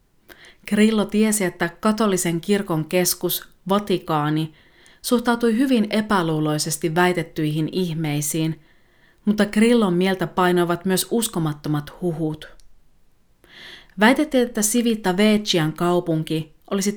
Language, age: Finnish, 30-49